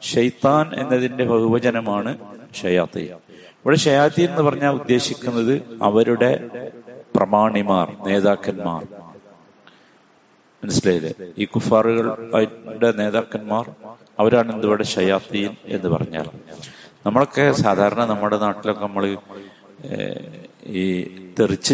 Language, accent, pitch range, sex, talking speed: Malayalam, native, 100-125 Hz, male, 75 wpm